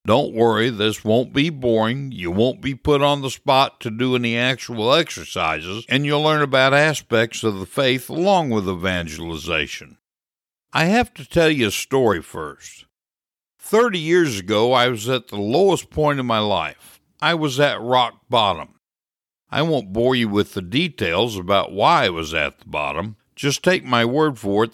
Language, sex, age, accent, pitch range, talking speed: English, male, 60-79, American, 105-145 Hz, 180 wpm